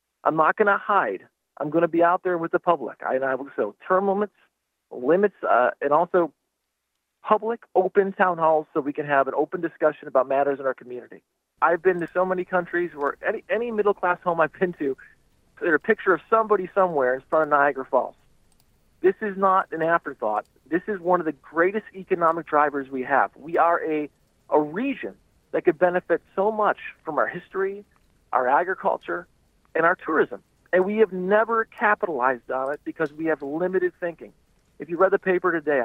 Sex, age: male, 40-59